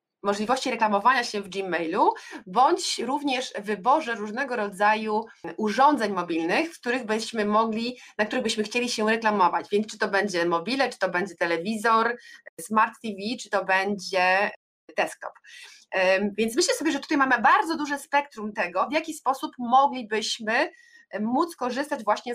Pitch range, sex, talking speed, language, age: 215-295 Hz, female, 135 wpm, Polish, 20-39